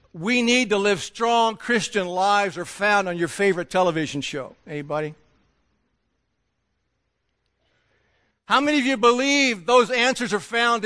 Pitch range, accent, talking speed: 185-255 Hz, American, 135 wpm